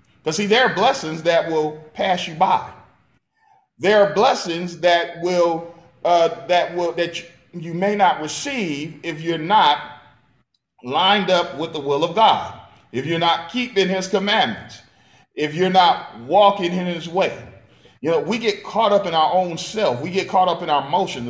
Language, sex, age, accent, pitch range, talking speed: English, male, 40-59, American, 155-205 Hz, 180 wpm